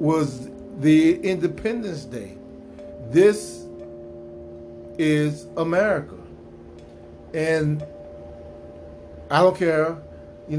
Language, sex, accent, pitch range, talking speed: English, male, American, 115-165 Hz, 70 wpm